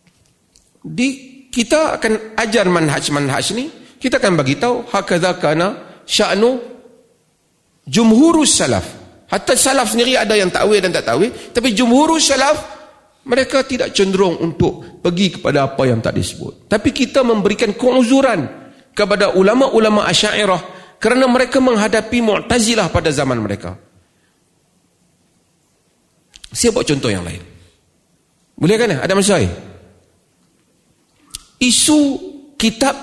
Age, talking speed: 40-59, 115 wpm